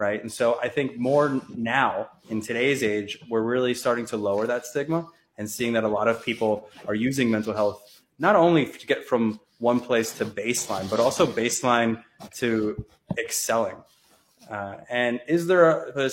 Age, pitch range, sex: 20-39, 105-125 Hz, male